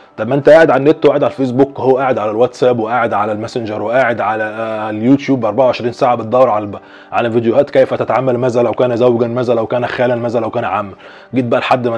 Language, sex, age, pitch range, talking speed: Arabic, male, 20-39, 115-130 Hz, 215 wpm